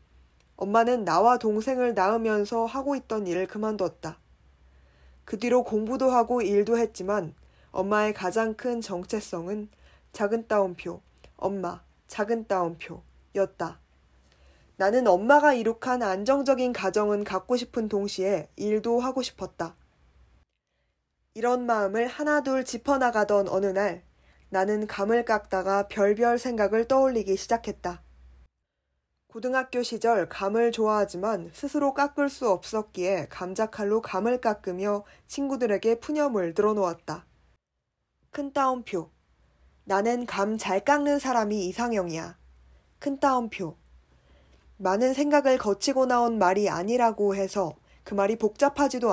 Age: 20-39